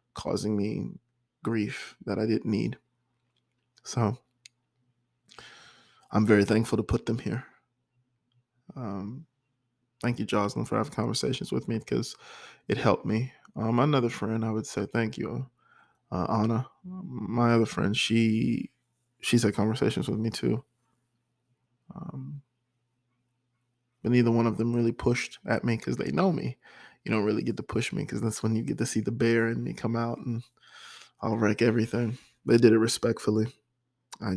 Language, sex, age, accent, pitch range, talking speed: English, male, 20-39, American, 110-125 Hz, 160 wpm